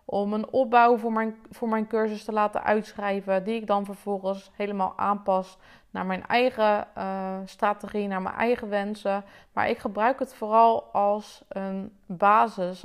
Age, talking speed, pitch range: 20-39, 155 wpm, 195-225 Hz